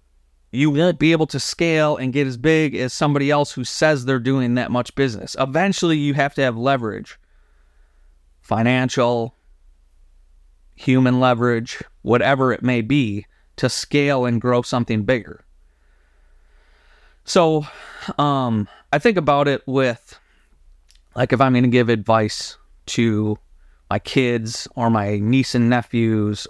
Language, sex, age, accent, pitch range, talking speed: English, male, 30-49, American, 110-140 Hz, 140 wpm